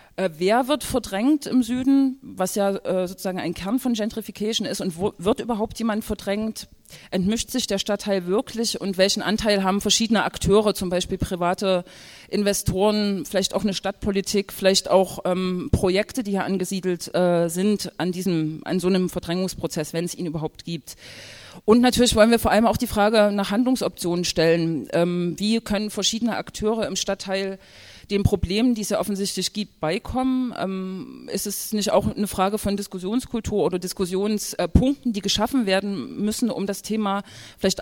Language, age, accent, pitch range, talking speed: German, 40-59, German, 185-215 Hz, 165 wpm